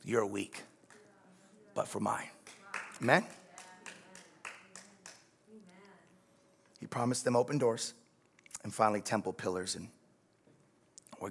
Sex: male